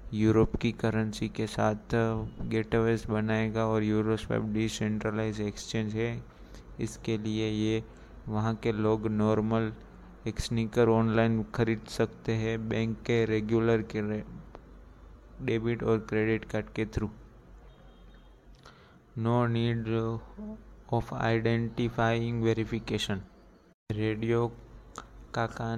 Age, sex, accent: 20-39, male, native